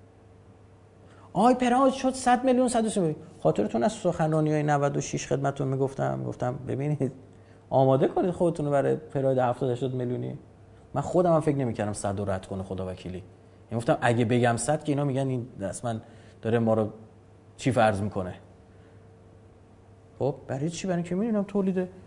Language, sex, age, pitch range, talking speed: Persian, male, 30-49, 105-145 Hz, 155 wpm